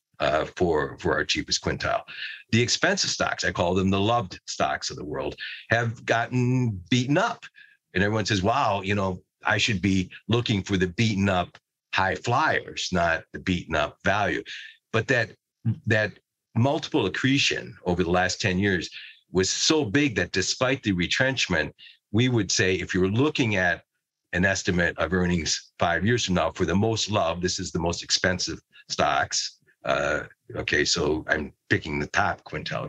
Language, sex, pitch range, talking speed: English, male, 95-115 Hz, 170 wpm